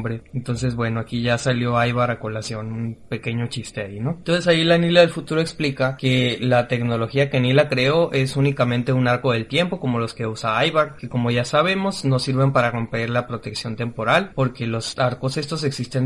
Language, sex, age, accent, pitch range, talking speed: Spanish, male, 20-39, Mexican, 125-145 Hz, 200 wpm